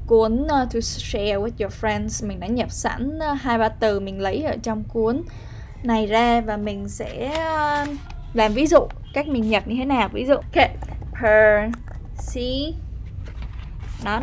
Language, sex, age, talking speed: Vietnamese, female, 10-29, 150 wpm